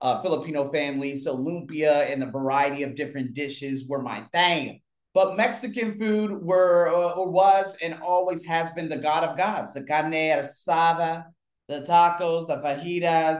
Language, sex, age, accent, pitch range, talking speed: English, male, 30-49, American, 135-195 Hz, 155 wpm